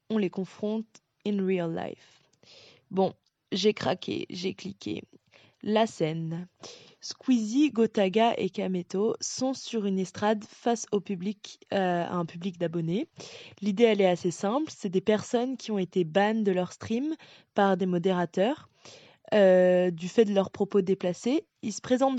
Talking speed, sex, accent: 155 wpm, female, French